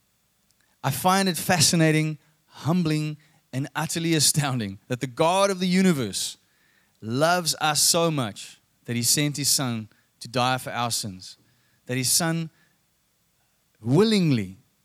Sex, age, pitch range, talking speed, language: male, 30-49, 120-170 Hz, 130 wpm, English